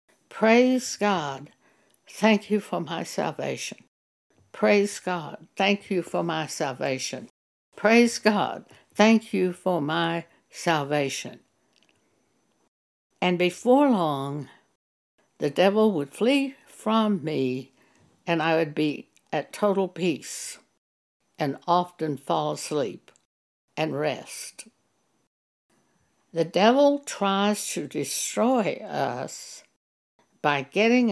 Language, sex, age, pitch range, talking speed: English, female, 60-79, 155-210 Hz, 100 wpm